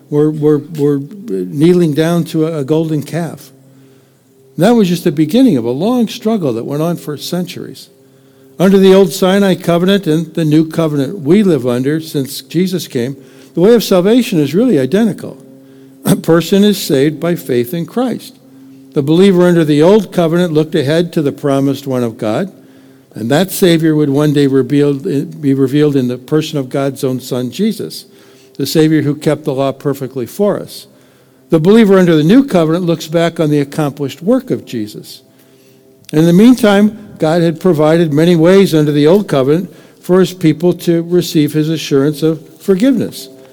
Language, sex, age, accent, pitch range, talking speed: English, male, 60-79, American, 135-180 Hz, 175 wpm